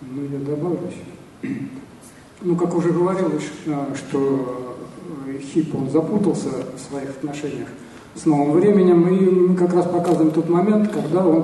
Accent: native